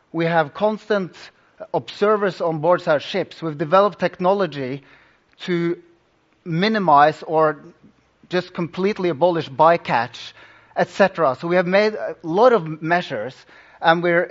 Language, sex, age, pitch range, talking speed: English, male, 30-49, 155-195 Hz, 120 wpm